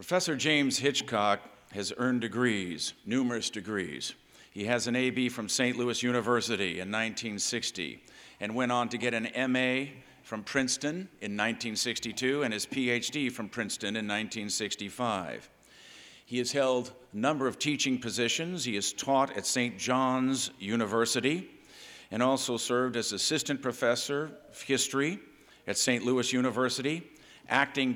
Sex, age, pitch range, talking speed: male, 50-69, 120-140 Hz, 135 wpm